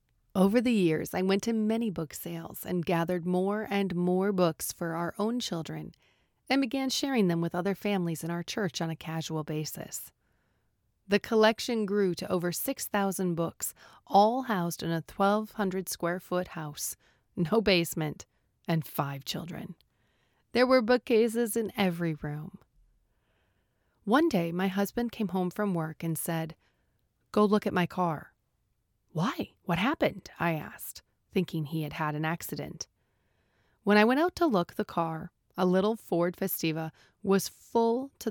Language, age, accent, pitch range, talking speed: English, 30-49, American, 160-210 Hz, 155 wpm